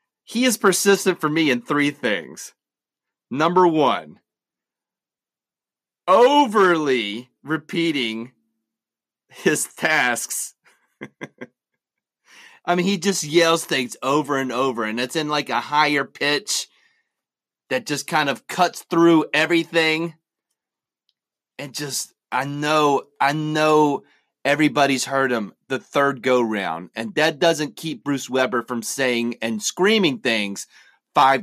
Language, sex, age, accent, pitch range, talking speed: English, male, 30-49, American, 130-185 Hz, 120 wpm